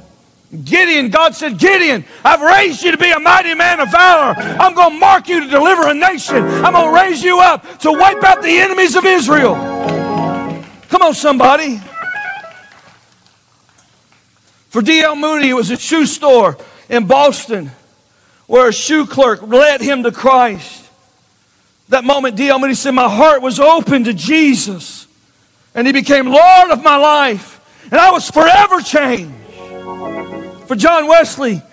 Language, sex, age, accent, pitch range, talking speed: English, male, 50-69, American, 235-320 Hz, 155 wpm